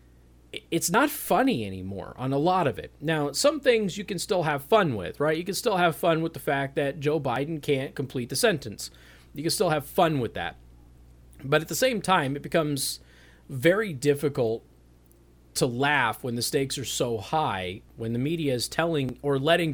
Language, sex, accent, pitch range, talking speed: English, male, American, 110-155 Hz, 200 wpm